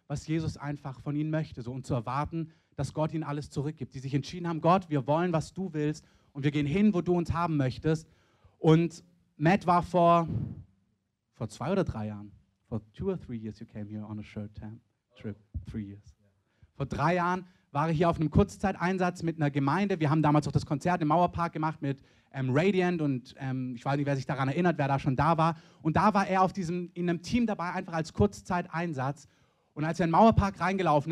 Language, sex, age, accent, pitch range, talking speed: German, male, 30-49, German, 135-175 Hz, 195 wpm